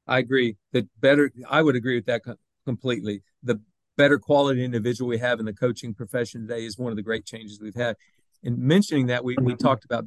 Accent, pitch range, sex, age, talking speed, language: American, 115-145 Hz, male, 50-69, 215 wpm, English